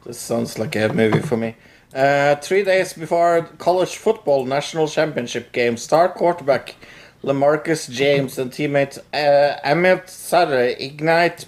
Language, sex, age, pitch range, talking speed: English, male, 50-69, 135-165 Hz, 135 wpm